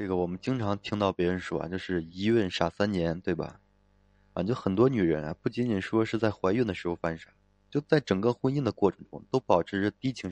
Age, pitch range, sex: 20-39, 95-110 Hz, male